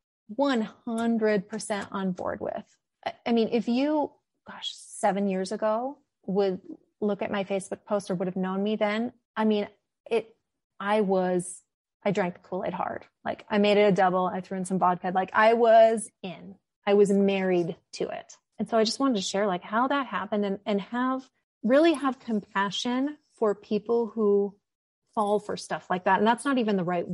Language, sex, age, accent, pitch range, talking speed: English, female, 30-49, American, 195-235 Hz, 190 wpm